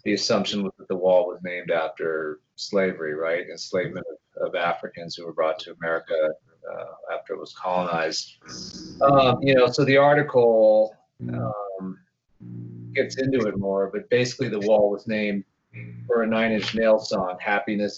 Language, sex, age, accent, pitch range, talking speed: English, male, 40-59, American, 95-110 Hz, 165 wpm